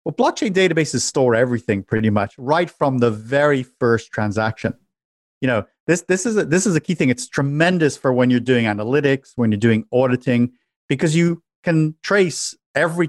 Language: English